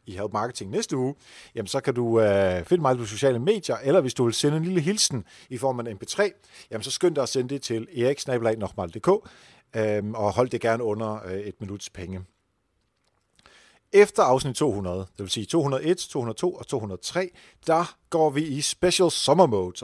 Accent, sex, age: native, male, 40-59